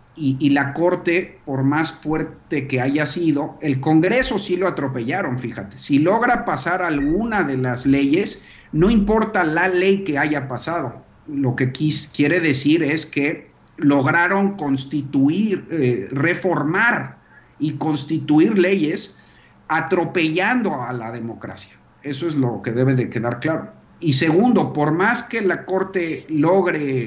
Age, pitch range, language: 50-69, 135-175 Hz, Spanish